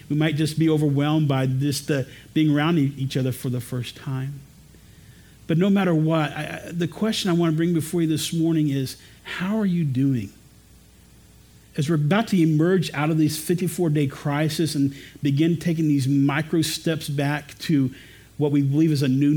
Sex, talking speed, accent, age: male, 185 wpm, American, 50-69